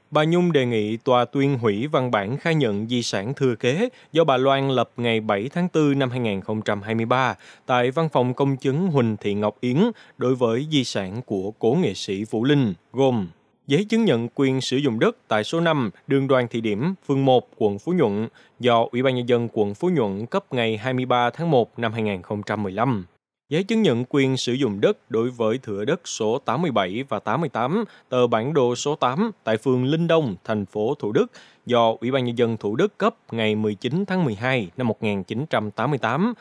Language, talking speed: Vietnamese, 200 wpm